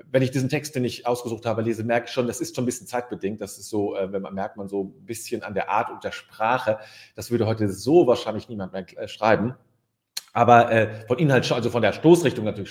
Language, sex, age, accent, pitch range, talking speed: German, male, 40-59, German, 100-125 Hz, 245 wpm